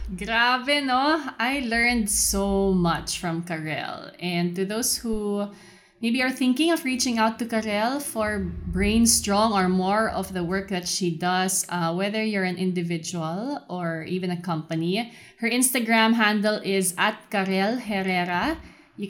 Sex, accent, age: female, Filipino, 20-39